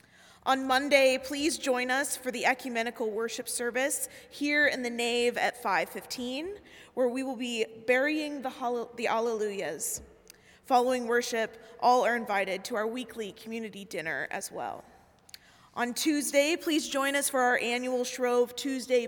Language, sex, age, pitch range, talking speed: English, female, 20-39, 225-260 Hz, 140 wpm